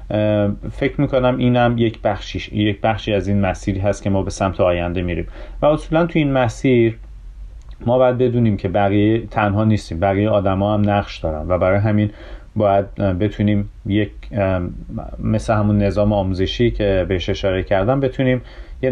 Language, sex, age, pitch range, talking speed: Persian, male, 30-49, 95-115 Hz, 165 wpm